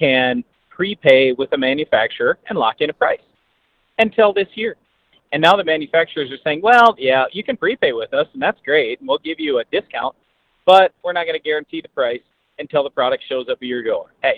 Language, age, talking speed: English, 40-59, 205 wpm